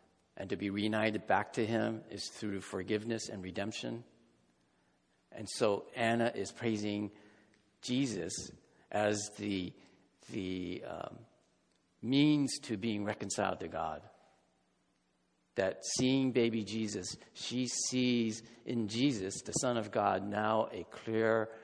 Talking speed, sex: 120 wpm, male